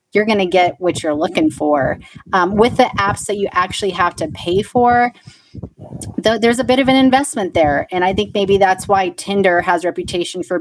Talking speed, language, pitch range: 205 wpm, English, 180-220 Hz